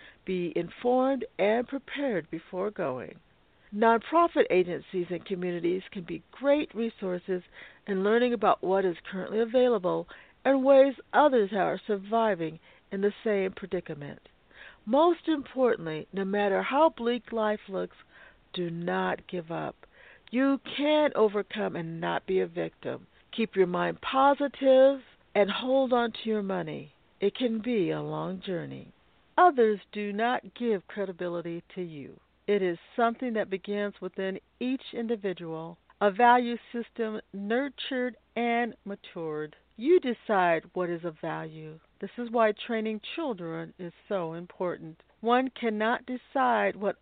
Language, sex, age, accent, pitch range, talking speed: English, female, 60-79, American, 180-240 Hz, 135 wpm